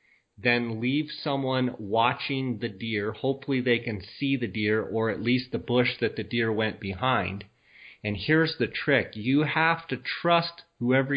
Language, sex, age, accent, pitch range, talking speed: English, male, 40-59, American, 115-135 Hz, 165 wpm